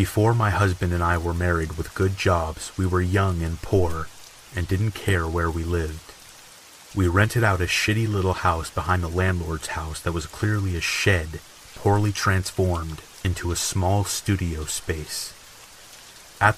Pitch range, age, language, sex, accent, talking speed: 85-100 Hz, 30-49, English, male, American, 165 wpm